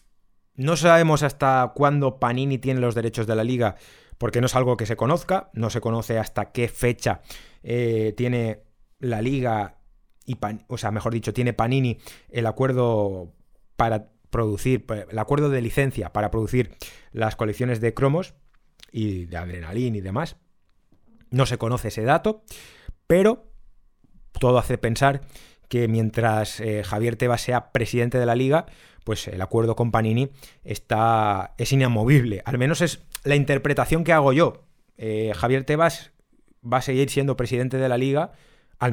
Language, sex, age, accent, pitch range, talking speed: Spanish, male, 30-49, Spanish, 110-135 Hz, 155 wpm